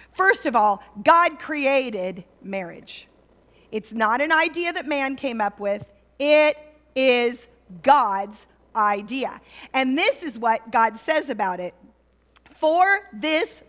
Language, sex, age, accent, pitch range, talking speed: English, female, 40-59, American, 250-360 Hz, 125 wpm